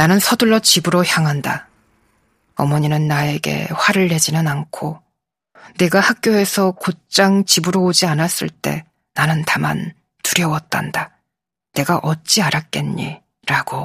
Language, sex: Korean, female